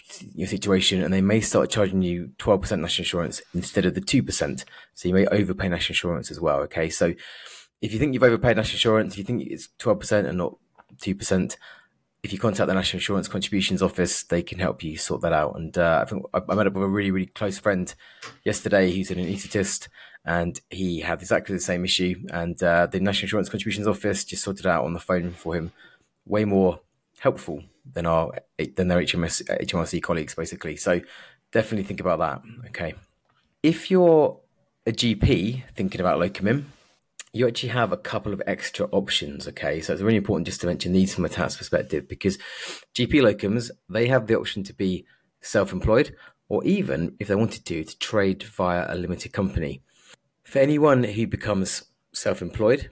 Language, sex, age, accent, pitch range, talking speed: English, male, 20-39, British, 90-110 Hz, 190 wpm